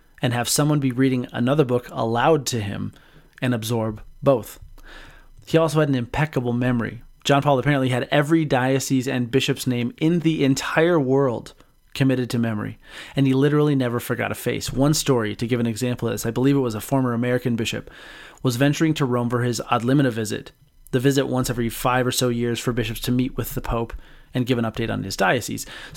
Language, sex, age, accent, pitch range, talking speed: English, male, 30-49, American, 120-140 Hz, 205 wpm